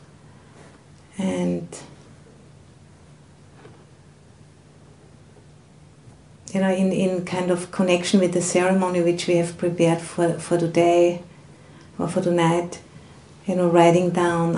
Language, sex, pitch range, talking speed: English, female, 170-180 Hz, 105 wpm